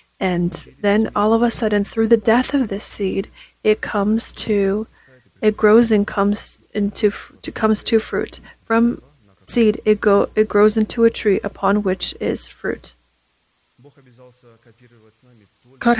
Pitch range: 190-225 Hz